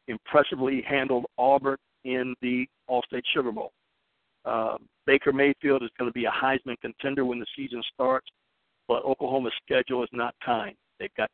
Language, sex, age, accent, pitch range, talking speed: English, male, 50-69, American, 120-135 Hz, 160 wpm